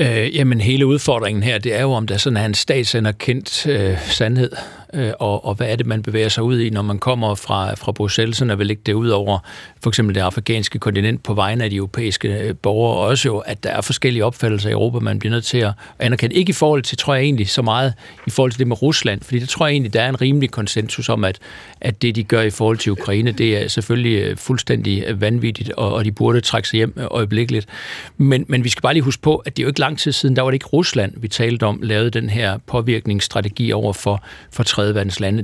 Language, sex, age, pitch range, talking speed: Danish, male, 60-79, 110-135 Hz, 220 wpm